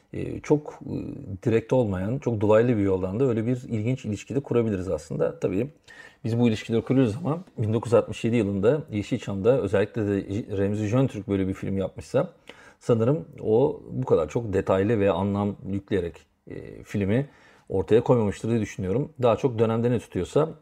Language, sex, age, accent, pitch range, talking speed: Turkish, male, 40-59, native, 100-130 Hz, 150 wpm